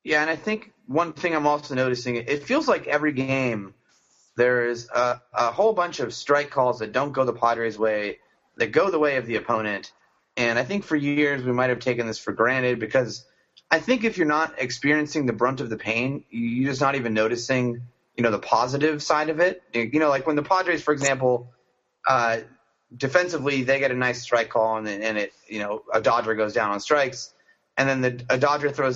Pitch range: 120-150 Hz